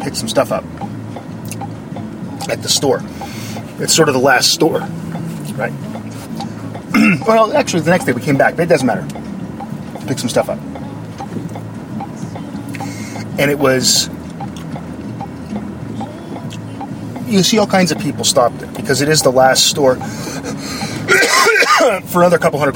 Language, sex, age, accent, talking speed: English, male, 30-49, American, 135 wpm